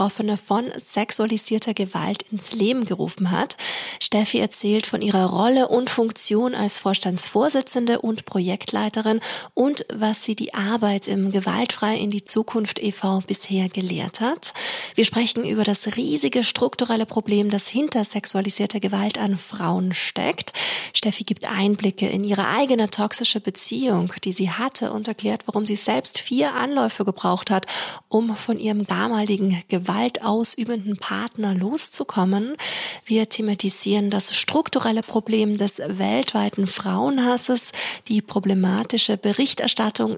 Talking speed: 130 wpm